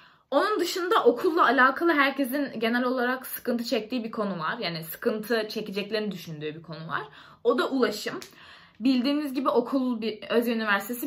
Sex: female